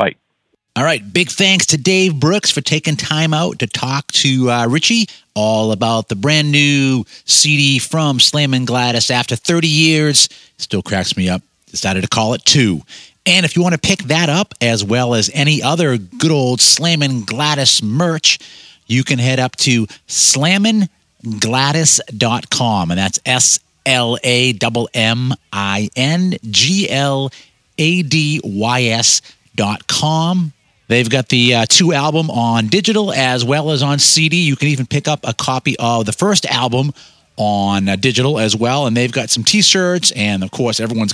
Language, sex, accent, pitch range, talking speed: English, male, American, 115-155 Hz, 170 wpm